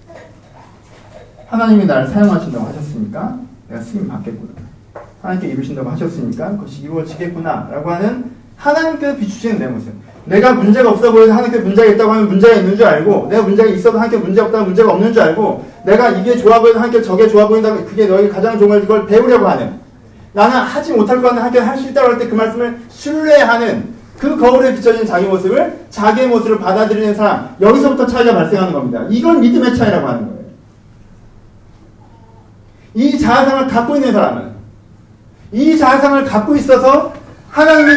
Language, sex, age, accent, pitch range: Korean, male, 40-59, native, 205-255 Hz